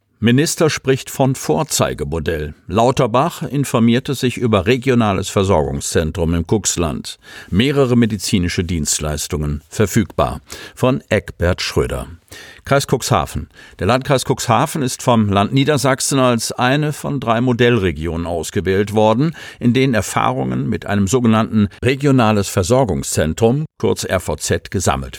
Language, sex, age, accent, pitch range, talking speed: German, male, 50-69, German, 95-125 Hz, 110 wpm